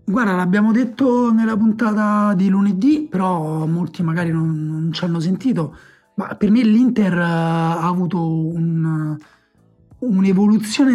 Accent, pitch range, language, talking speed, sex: native, 165-210 Hz, Italian, 120 wpm, male